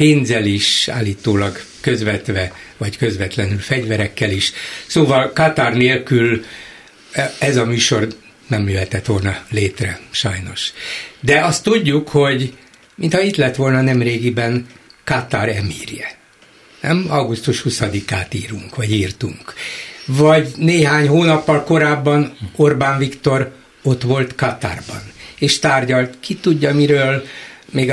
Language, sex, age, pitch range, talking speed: Hungarian, male, 60-79, 110-150 Hz, 110 wpm